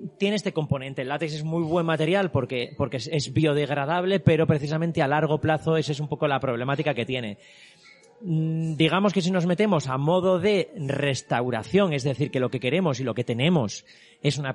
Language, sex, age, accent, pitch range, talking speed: Spanish, male, 30-49, Spanish, 140-175 Hz, 195 wpm